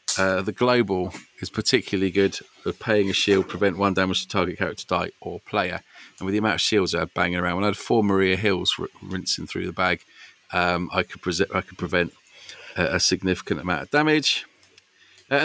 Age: 40-59